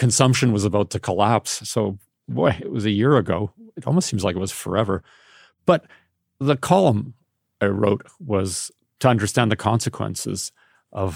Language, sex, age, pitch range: English, male, 40-59, 95-120 Hz